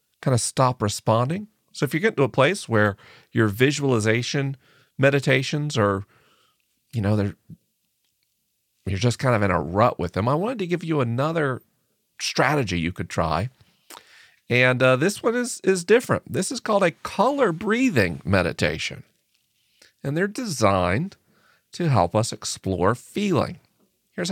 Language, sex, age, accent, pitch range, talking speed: English, male, 40-59, American, 105-145 Hz, 150 wpm